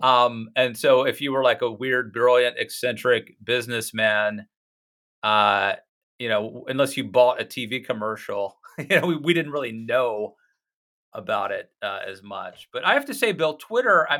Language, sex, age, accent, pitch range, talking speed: English, male, 30-49, American, 110-165 Hz, 175 wpm